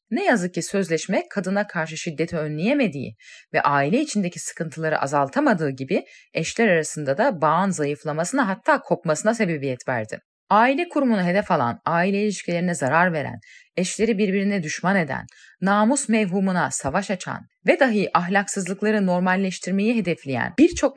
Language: Turkish